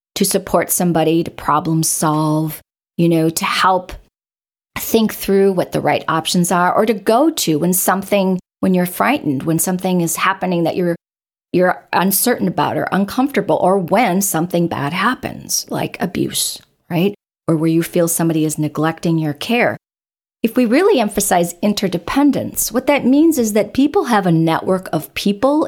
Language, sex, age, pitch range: English, female, 40-59, 165-215 Hz